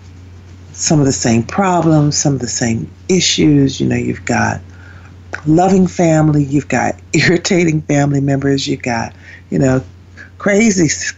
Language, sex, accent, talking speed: English, female, American, 140 wpm